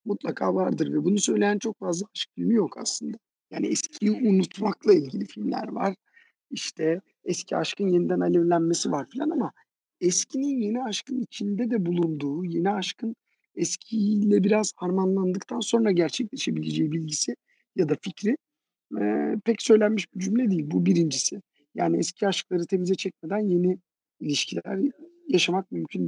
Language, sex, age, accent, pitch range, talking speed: Turkish, male, 50-69, native, 155-220 Hz, 135 wpm